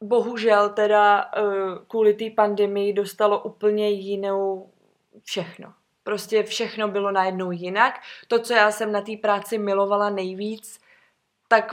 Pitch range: 205-245 Hz